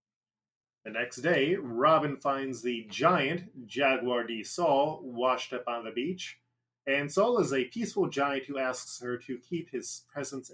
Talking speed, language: 160 wpm, English